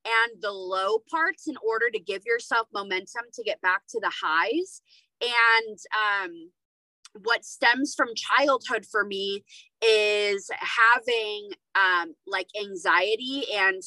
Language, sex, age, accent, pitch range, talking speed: English, female, 20-39, American, 195-260 Hz, 130 wpm